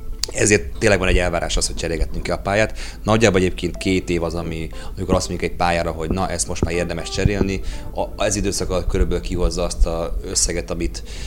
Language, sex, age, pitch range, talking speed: Hungarian, male, 30-49, 85-95 Hz, 200 wpm